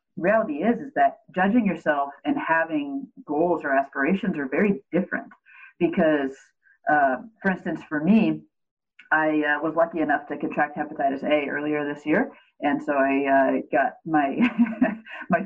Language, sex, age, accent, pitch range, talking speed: English, female, 30-49, American, 145-220 Hz, 150 wpm